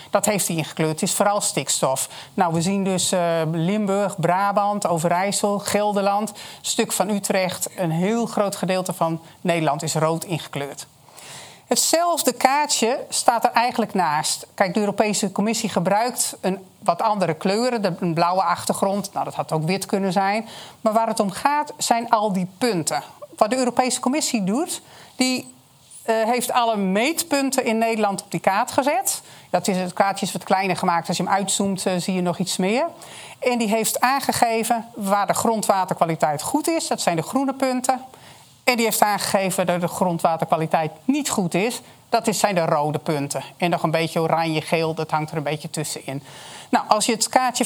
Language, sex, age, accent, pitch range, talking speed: Dutch, male, 40-59, Dutch, 175-230 Hz, 180 wpm